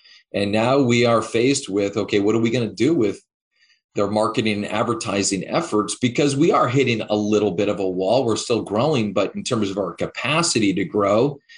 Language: English